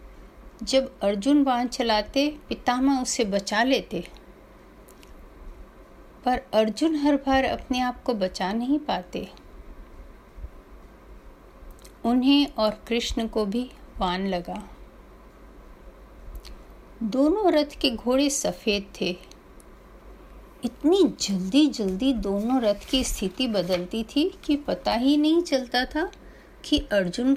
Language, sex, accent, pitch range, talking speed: Hindi, female, native, 205-270 Hz, 105 wpm